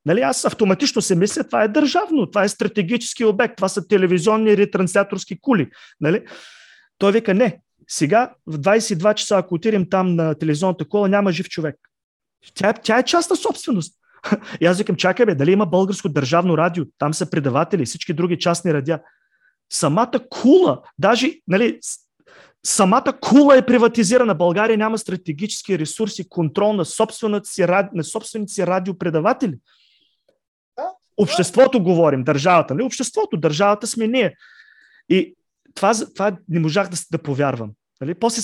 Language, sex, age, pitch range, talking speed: Bulgarian, male, 30-49, 170-225 Hz, 145 wpm